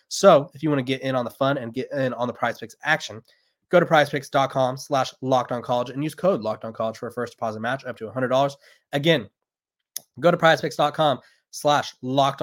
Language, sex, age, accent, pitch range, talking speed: English, male, 20-39, American, 125-160 Hz, 215 wpm